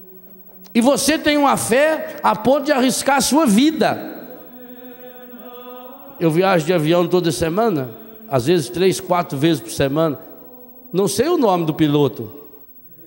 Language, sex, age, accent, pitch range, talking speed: Portuguese, male, 60-79, Brazilian, 170-230 Hz, 140 wpm